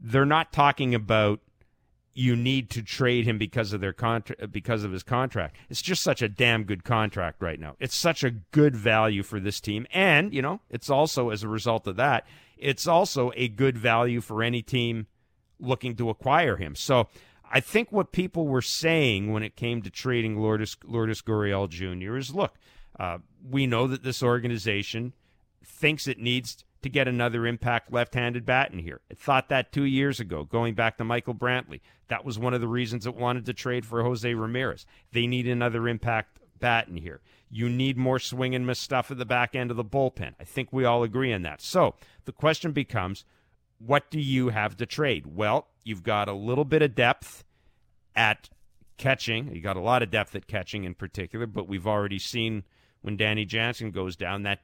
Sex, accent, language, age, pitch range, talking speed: male, American, English, 50-69, 105-130 Hz, 200 wpm